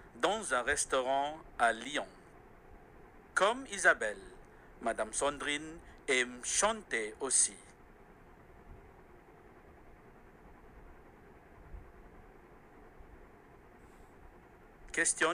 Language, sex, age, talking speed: Malay, male, 60-79, 50 wpm